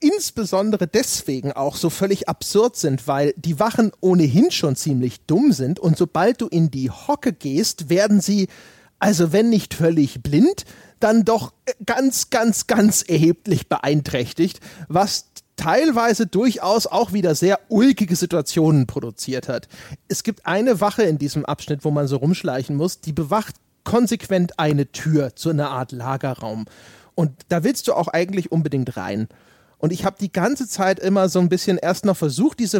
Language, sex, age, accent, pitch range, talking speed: German, male, 30-49, German, 150-200 Hz, 165 wpm